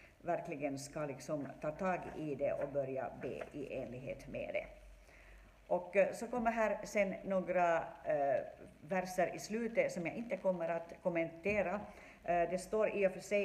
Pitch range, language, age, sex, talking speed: 160-195 Hz, Swedish, 60-79, female, 165 wpm